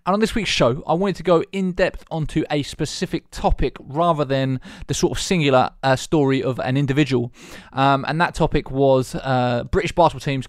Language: English